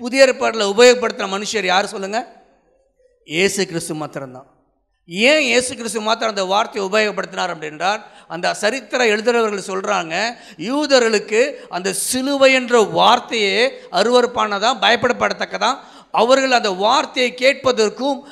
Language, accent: Tamil, native